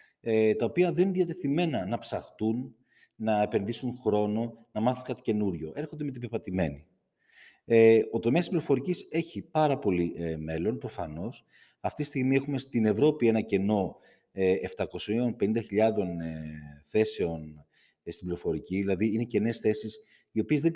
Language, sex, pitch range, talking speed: Greek, male, 105-145 Hz, 135 wpm